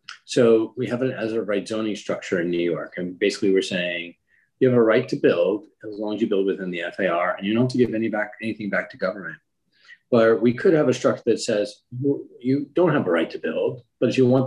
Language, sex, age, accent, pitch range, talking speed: English, male, 40-59, American, 105-135 Hz, 255 wpm